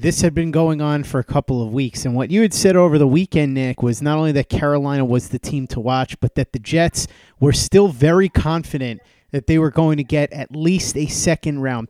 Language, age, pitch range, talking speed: English, 30-49, 130-160 Hz, 235 wpm